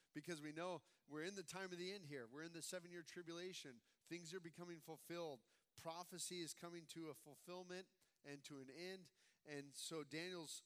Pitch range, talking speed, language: 135-175 Hz, 185 wpm, English